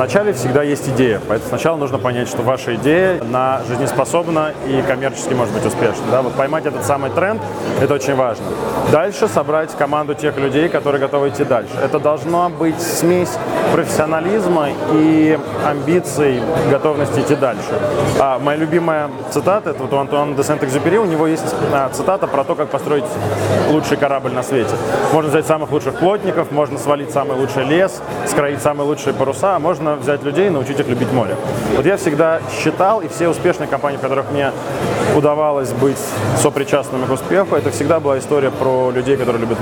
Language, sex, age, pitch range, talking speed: Russian, male, 20-39, 135-155 Hz, 175 wpm